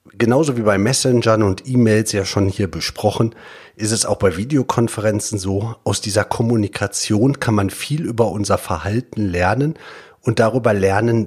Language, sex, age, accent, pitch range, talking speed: German, male, 40-59, German, 95-115 Hz, 155 wpm